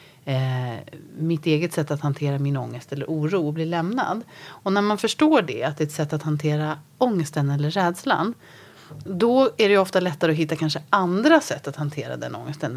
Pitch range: 145-195 Hz